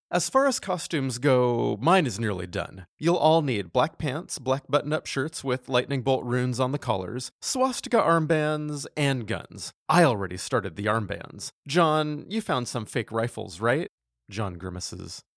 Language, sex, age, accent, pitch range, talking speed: English, male, 30-49, American, 110-165 Hz, 165 wpm